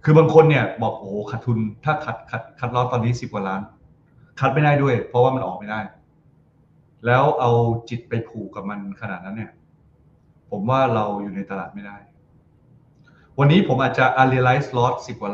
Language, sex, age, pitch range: Thai, male, 20-39, 115-145 Hz